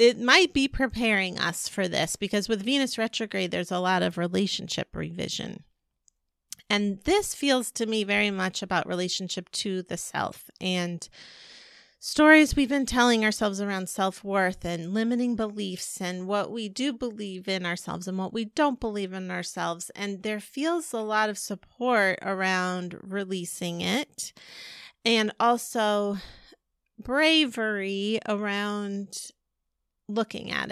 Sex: female